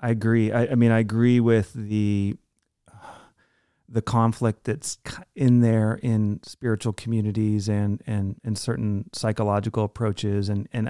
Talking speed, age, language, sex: 145 wpm, 30-49, English, male